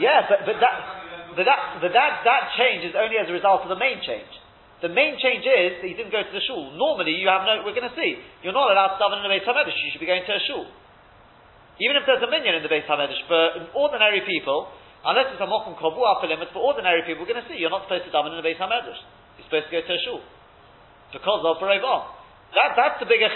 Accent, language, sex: British, English, male